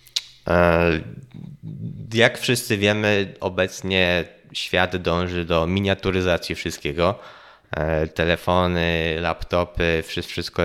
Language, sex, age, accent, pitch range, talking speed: Polish, male, 20-39, native, 85-100 Hz, 70 wpm